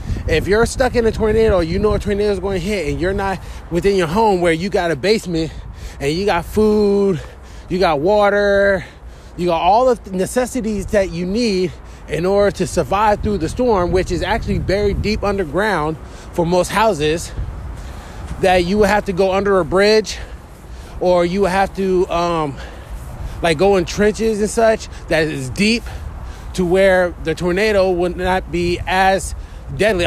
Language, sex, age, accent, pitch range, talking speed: English, male, 20-39, American, 180-225 Hz, 180 wpm